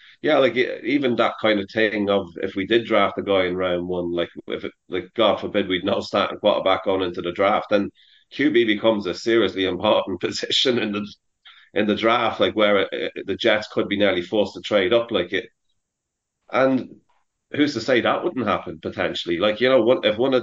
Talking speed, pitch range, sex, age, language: 210 wpm, 95-110 Hz, male, 30-49, English